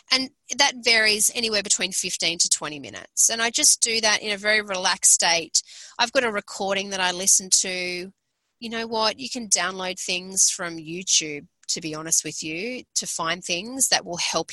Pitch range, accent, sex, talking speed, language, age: 185-255 Hz, Australian, female, 195 wpm, English, 30-49